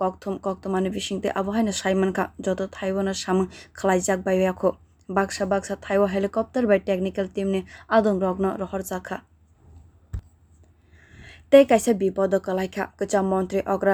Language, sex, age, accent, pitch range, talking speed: English, female, 20-39, Indian, 185-200 Hz, 75 wpm